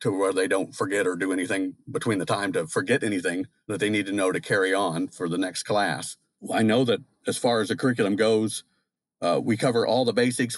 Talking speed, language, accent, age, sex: 235 wpm, English, American, 50-69, male